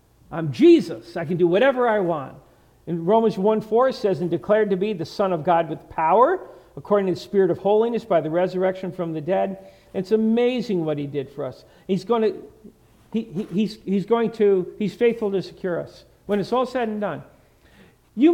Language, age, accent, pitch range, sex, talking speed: English, 50-69, American, 155-220 Hz, male, 195 wpm